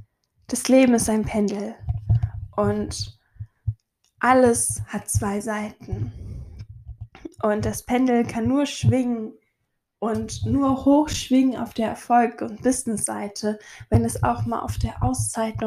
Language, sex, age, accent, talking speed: German, female, 10-29, German, 125 wpm